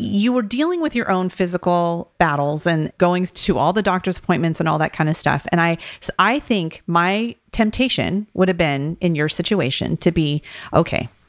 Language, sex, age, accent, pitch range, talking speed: English, female, 30-49, American, 170-220 Hz, 190 wpm